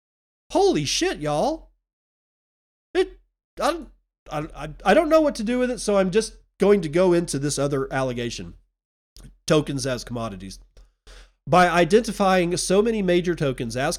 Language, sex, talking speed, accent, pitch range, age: English, male, 135 wpm, American, 130-185 Hz, 40-59